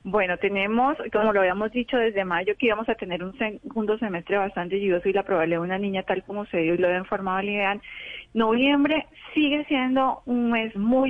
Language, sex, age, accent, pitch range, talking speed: Spanish, female, 30-49, Colombian, 190-230 Hz, 210 wpm